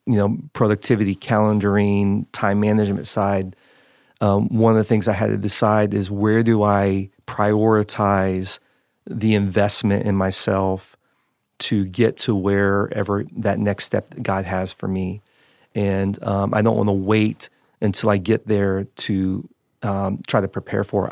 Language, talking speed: English, 155 wpm